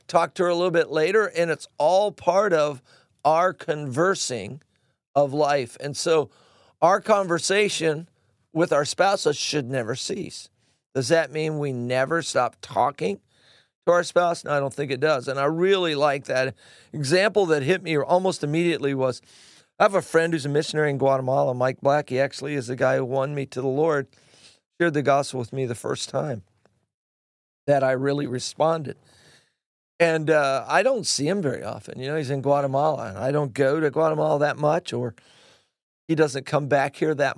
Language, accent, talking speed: English, American, 185 wpm